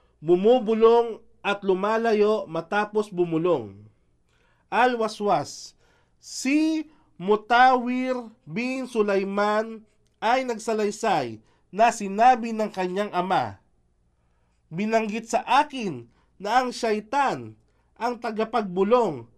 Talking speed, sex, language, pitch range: 75 wpm, male, English, 180-245 Hz